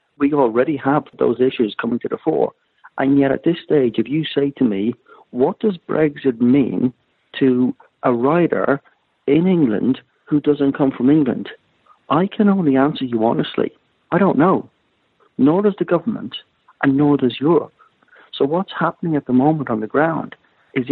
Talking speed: 170 wpm